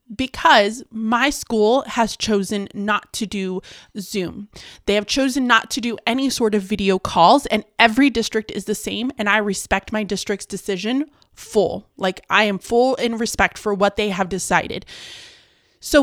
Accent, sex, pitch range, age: American, female, 205-255 Hz, 20-39